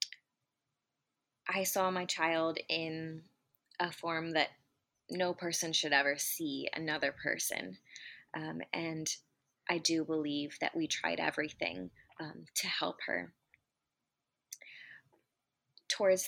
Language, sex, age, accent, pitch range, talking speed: English, female, 20-39, American, 150-180 Hz, 105 wpm